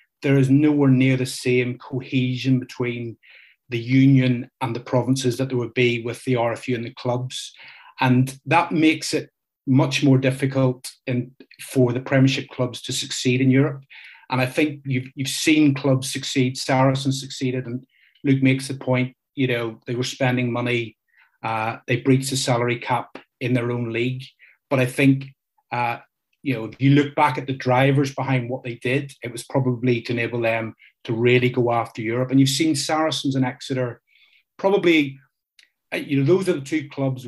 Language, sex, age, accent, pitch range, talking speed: English, male, 30-49, British, 125-135 Hz, 180 wpm